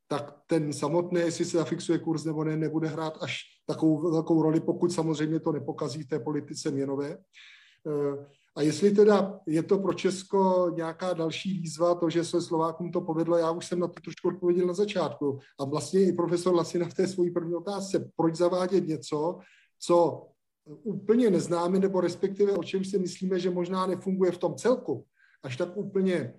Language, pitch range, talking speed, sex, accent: Czech, 155-180 Hz, 180 wpm, male, native